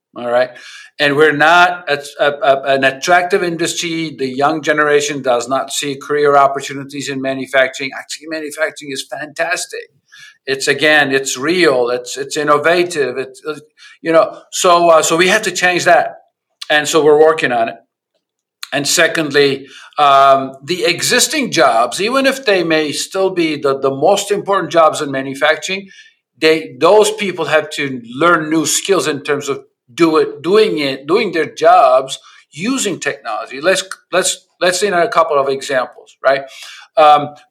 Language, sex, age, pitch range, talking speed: English, male, 50-69, 140-190 Hz, 150 wpm